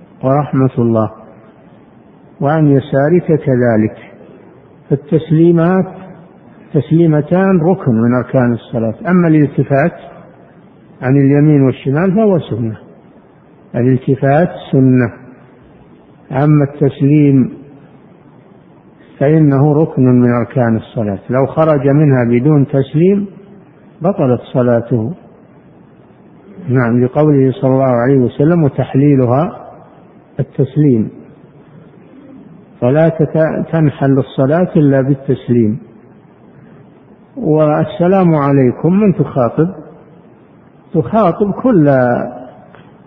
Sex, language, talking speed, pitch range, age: male, Arabic, 75 wpm, 125-165 Hz, 60-79